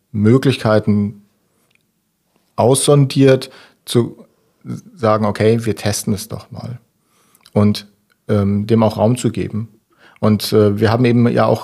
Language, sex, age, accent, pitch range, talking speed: German, male, 40-59, German, 100-120 Hz, 125 wpm